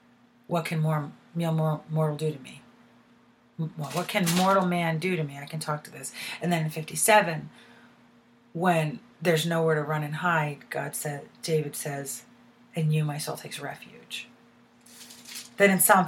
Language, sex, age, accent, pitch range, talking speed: English, female, 40-59, American, 155-195 Hz, 165 wpm